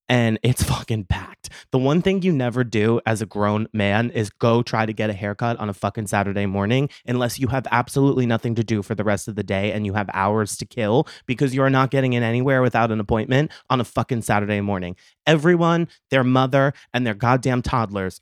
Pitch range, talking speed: 105-130 Hz, 215 wpm